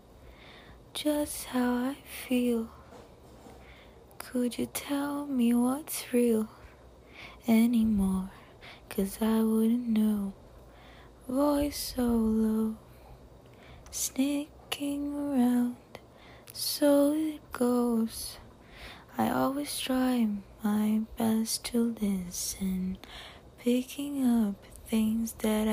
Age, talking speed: 20-39, 80 wpm